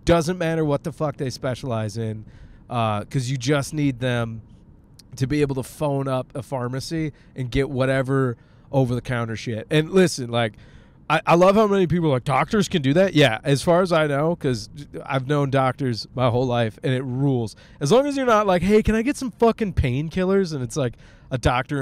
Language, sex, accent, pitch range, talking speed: English, male, American, 125-165 Hz, 205 wpm